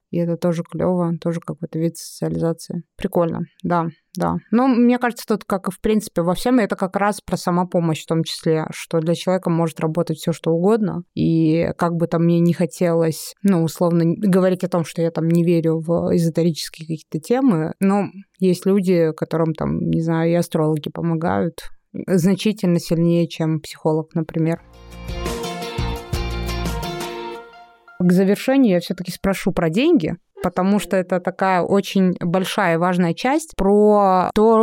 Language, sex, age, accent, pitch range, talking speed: Russian, female, 20-39, native, 165-195 Hz, 155 wpm